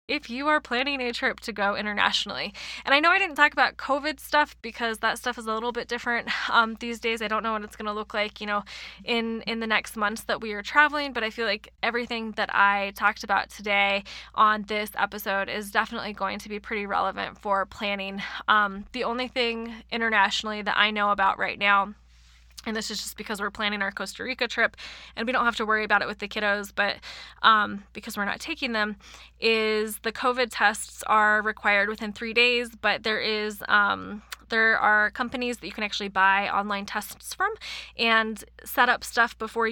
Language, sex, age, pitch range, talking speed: English, female, 20-39, 205-230 Hz, 210 wpm